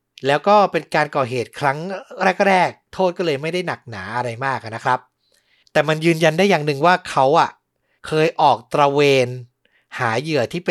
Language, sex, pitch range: Thai, male, 140-190 Hz